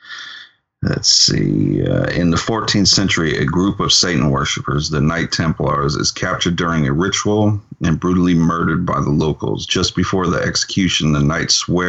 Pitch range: 80-105 Hz